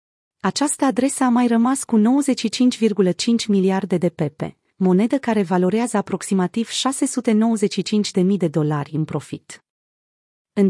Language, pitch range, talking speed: Romanian, 175-225 Hz, 125 wpm